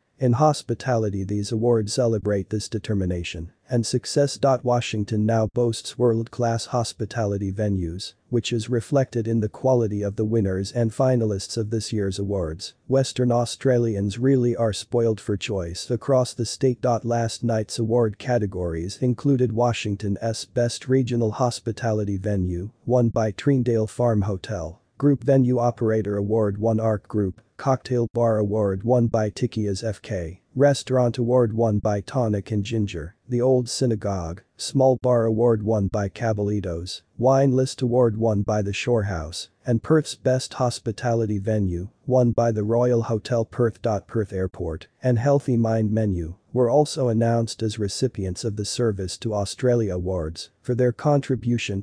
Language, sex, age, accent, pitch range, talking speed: English, male, 40-59, American, 105-125 Hz, 145 wpm